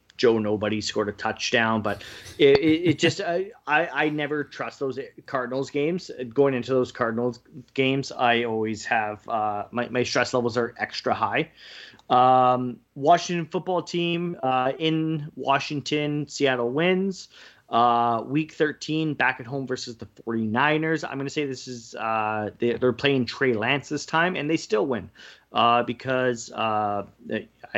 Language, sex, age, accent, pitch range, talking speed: English, male, 30-49, American, 120-150 Hz, 150 wpm